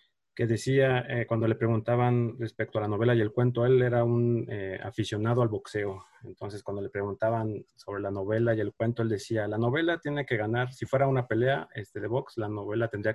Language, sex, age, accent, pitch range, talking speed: Spanish, male, 30-49, Mexican, 105-120 Hz, 215 wpm